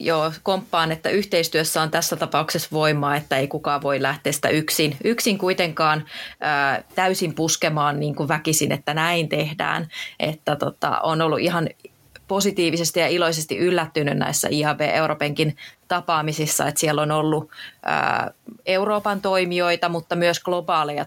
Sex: female